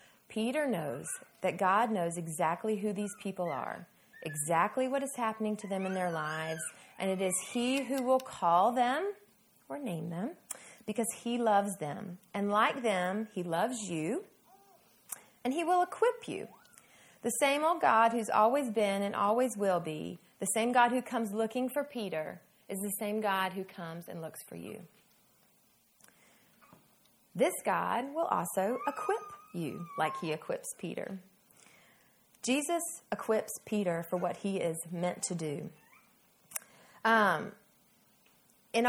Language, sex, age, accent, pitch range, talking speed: English, female, 30-49, American, 175-235 Hz, 150 wpm